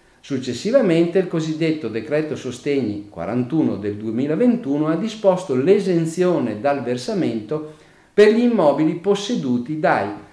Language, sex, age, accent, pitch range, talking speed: Italian, male, 50-69, native, 125-190 Hz, 105 wpm